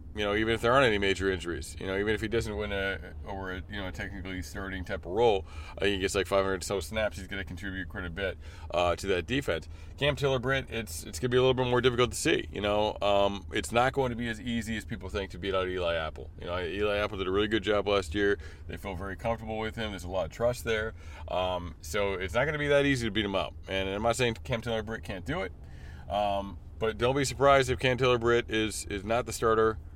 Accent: American